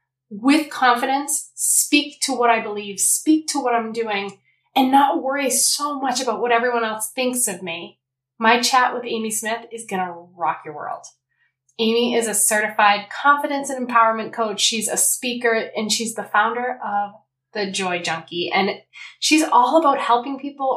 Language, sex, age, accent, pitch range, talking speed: English, female, 20-39, American, 195-255 Hz, 175 wpm